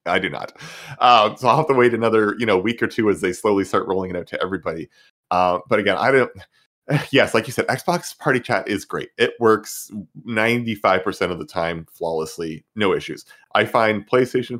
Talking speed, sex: 205 wpm, male